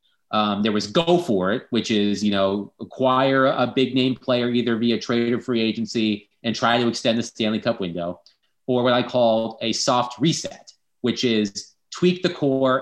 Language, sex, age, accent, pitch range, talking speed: English, male, 30-49, American, 110-130 Hz, 190 wpm